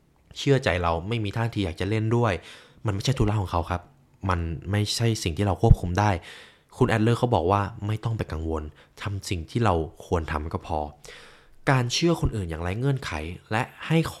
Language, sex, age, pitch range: Thai, male, 20-39, 90-120 Hz